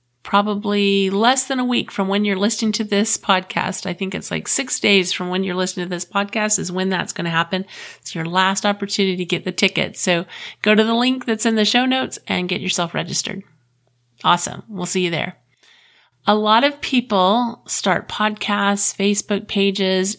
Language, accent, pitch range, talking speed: English, American, 175-220 Hz, 195 wpm